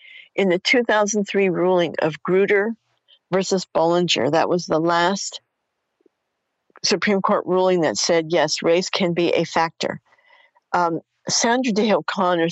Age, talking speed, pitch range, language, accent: 50-69, 130 wpm, 170-230 Hz, English, American